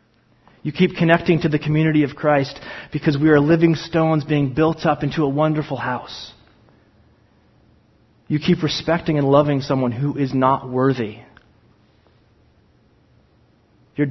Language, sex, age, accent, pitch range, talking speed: English, male, 30-49, American, 115-150 Hz, 130 wpm